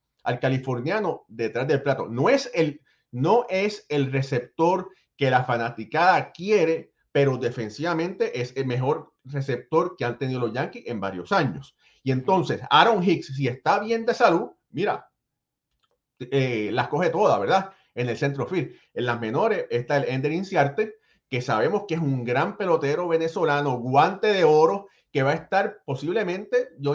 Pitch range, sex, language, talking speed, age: 135-190 Hz, male, English, 165 wpm, 30-49